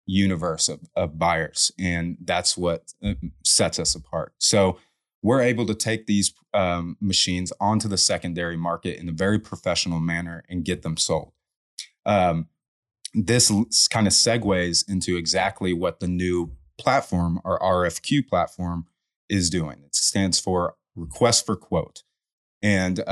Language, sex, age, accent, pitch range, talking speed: English, male, 30-49, American, 90-110 Hz, 145 wpm